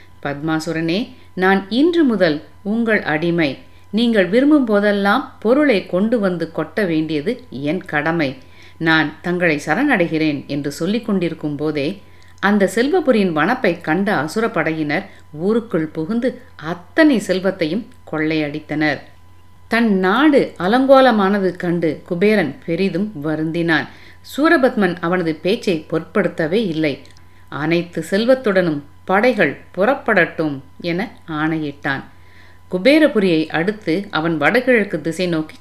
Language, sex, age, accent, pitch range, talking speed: Tamil, female, 50-69, native, 155-215 Hz, 95 wpm